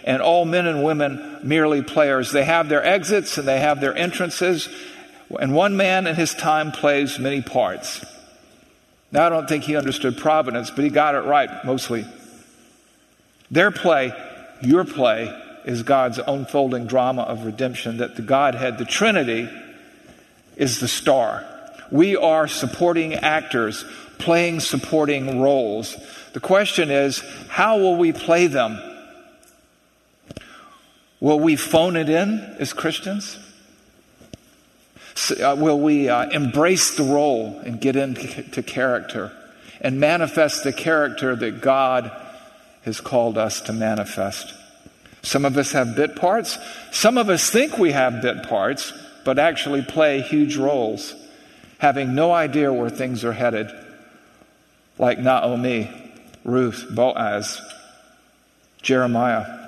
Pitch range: 130-170 Hz